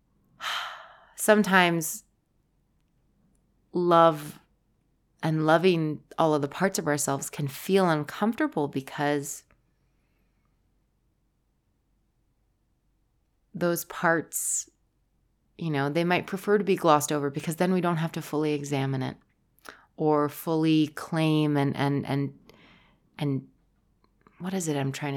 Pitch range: 145-185 Hz